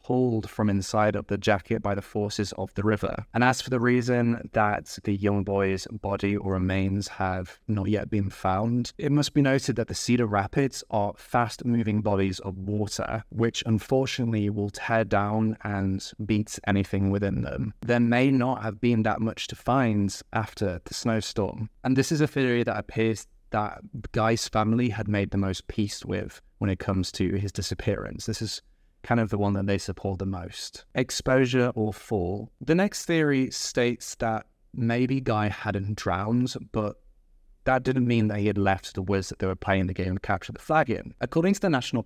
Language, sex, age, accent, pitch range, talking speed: English, male, 20-39, British, 100-120 Hz, 195 wpm